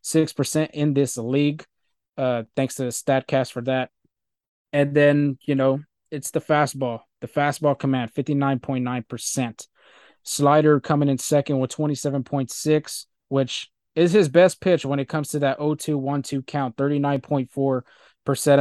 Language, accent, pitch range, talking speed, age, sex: English, American, 130-150 Hz, 180 wpm, 20-39, male